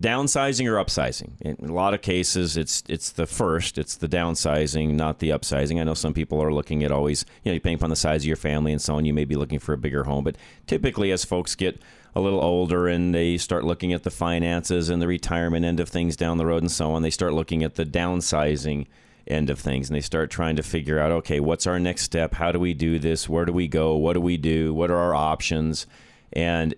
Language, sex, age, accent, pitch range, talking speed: English, male, 30-49, American, 80-95 Hz, 250 wpm